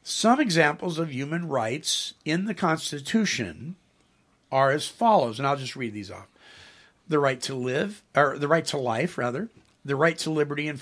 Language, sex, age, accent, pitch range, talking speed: English, male, 50-69, American, 135-175 Hz, 175 wpm